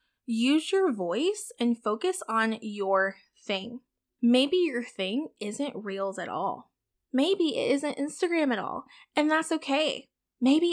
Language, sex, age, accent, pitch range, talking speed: English, female, 10-29, American, 215-290 Hz, 140 wpm